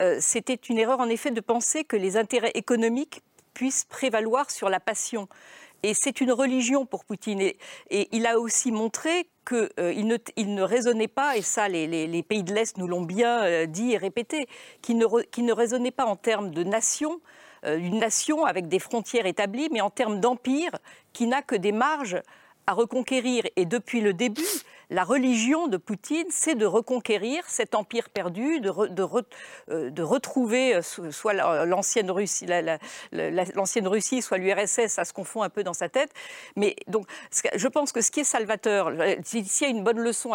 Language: French